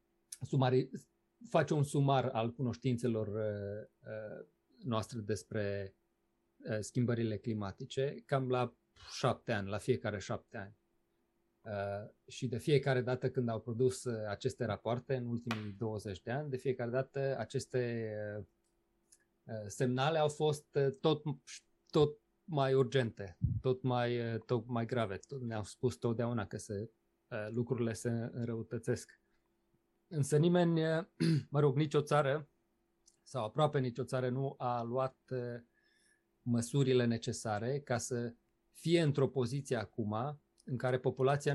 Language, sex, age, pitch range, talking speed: Romanian, male, 30-49, 110-135 Hz, 115 wpm